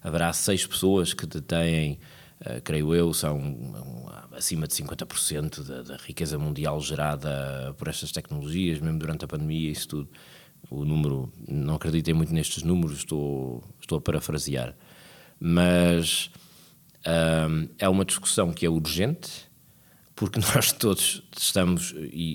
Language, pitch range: Portuguese, 80-125 Hz